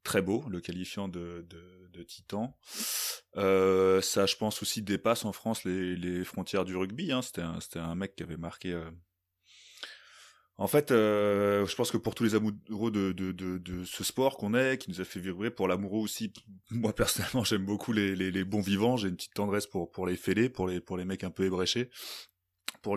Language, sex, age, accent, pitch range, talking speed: French, male, 20-39, French, 90-105 Hz, 215 wpm